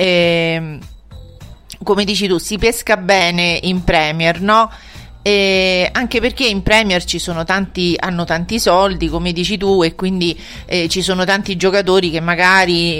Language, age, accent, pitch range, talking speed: Italian, 40-59, native, 170-200 Hz, 150 wpm